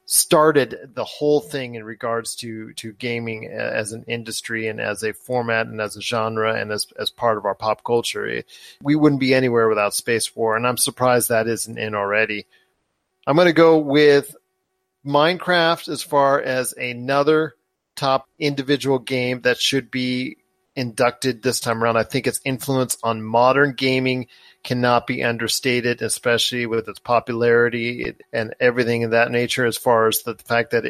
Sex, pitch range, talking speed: male, 115-140 Hz, 170 wpm